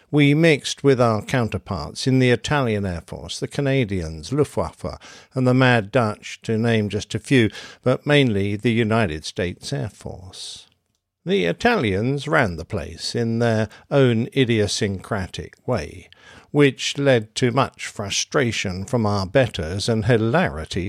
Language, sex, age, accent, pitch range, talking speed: English, male, 50-69, British, 105-145 Hz, 140 wpm